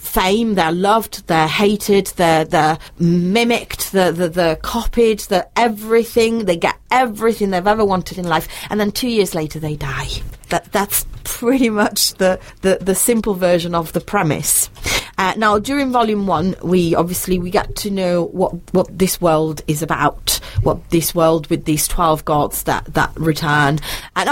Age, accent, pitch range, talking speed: 30-49, British, 165-210 Hz, 170 wpm